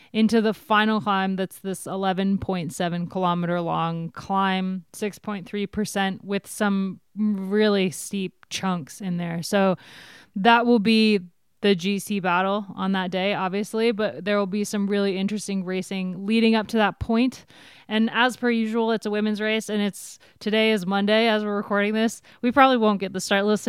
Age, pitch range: 20-39, 190-220 Hz